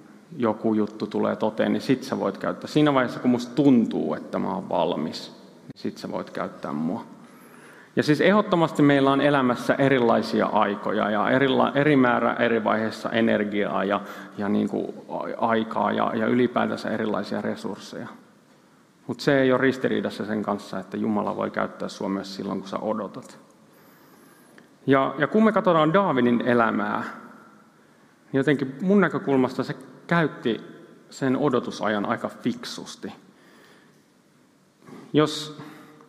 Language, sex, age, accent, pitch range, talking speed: Finnish, male, 30-49, native, 110-145 Hz, 140 wpm